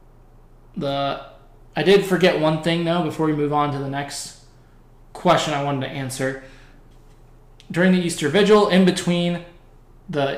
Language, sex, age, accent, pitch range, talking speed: English, male, 20-39, American, 130-160 Hz, 150 wpm